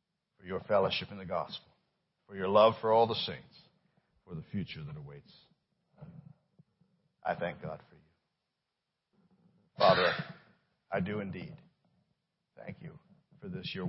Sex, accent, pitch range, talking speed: male, American, 100-125 Hz, 140 wpm